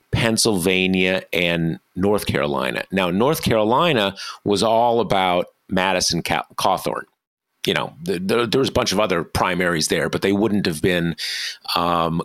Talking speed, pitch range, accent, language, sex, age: 135 wpm, 90-105 Hz, American, English, male, 50-69